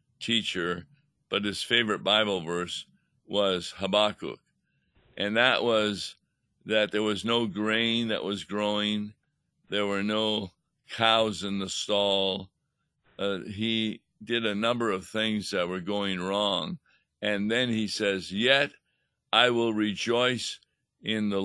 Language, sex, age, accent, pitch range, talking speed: English, male, 60-79, American, 95-115 Hz, 130 wpm